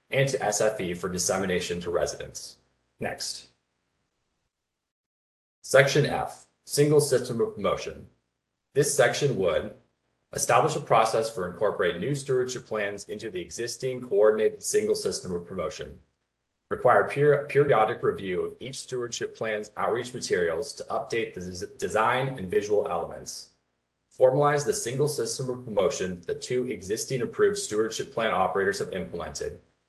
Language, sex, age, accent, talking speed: English, male, 30-49, American, 130 wpm